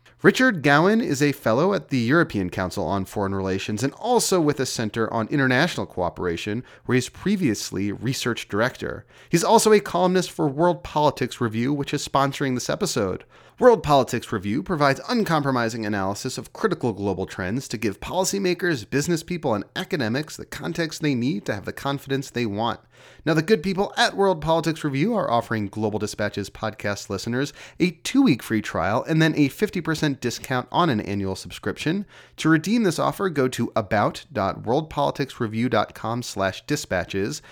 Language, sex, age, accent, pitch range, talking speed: English, male, 30-49, American, 110-160 Hz, 160 wpm